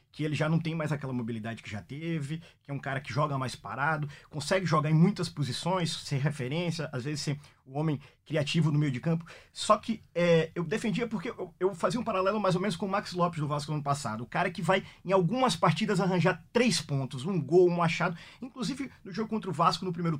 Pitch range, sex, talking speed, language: 145-180 Hz, male, 245 wpm, Portuguese